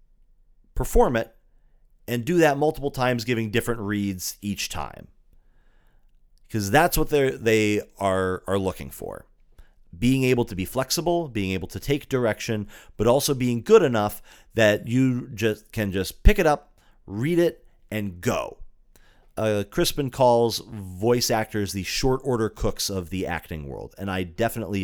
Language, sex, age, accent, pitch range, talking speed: English, male, 30-49, American, 100-130 Hz, 150 wpm